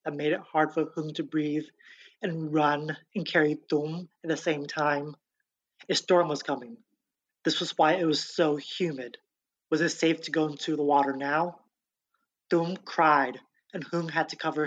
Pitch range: 150-175 Hz